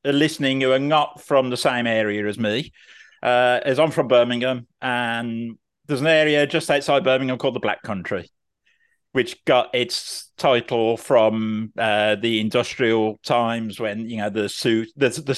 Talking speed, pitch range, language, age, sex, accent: 155 wpm, 115-150 Hz, English, 50-69, male, British